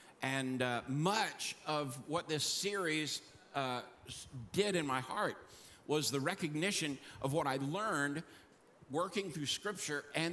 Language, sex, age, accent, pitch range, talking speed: English, male, 50-69, American, 145-195 Hz, 135 wpm